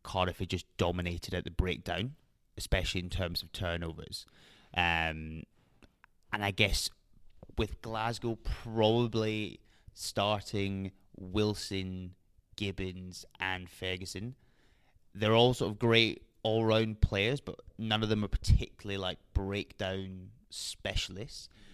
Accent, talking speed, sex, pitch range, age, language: British, 110 wpm, male, 90-105 Hz, 20-39, English